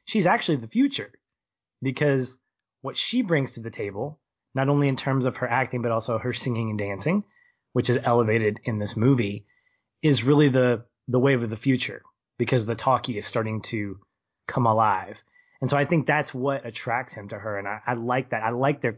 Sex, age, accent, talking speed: male, 20-39, American, 200 wpm